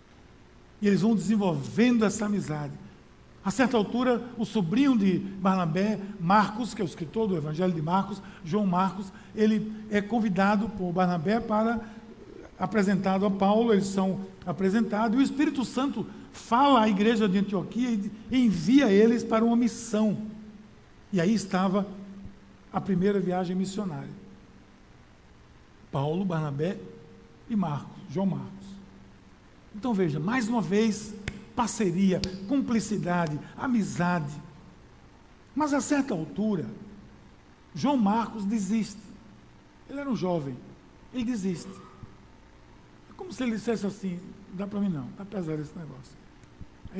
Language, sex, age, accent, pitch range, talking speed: Portuguese, male, 60-79, Brazilian, 180-225 Hz, 125 wpm